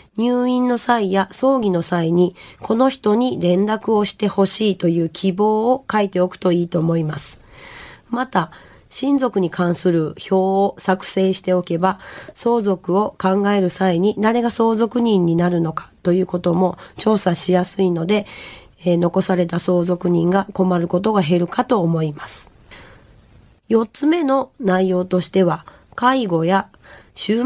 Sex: female